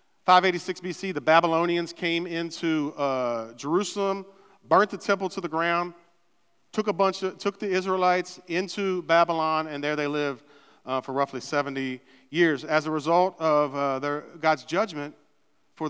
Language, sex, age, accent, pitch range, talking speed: English, male, 40-59, American, 150-190 Hz, 155 wpm